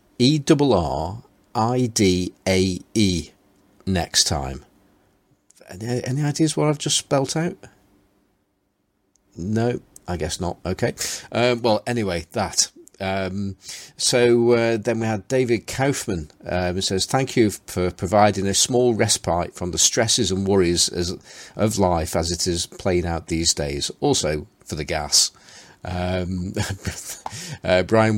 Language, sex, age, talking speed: English, male, 40-59, 130 wpm